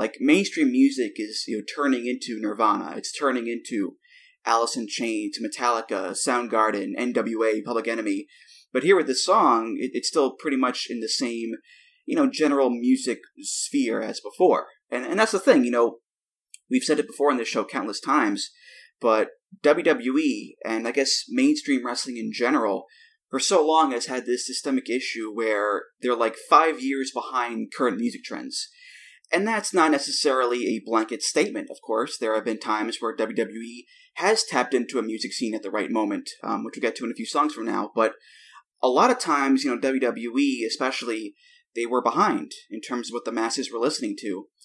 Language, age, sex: English, 20-39, male